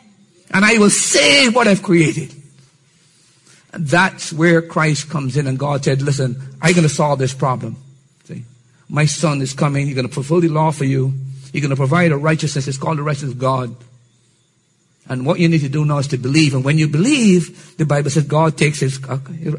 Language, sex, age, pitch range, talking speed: English, male, 50-69, 130-165 Hz, 210 wpm